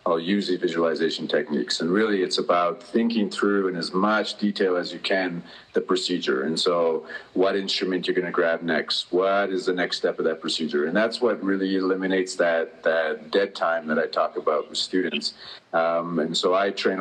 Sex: male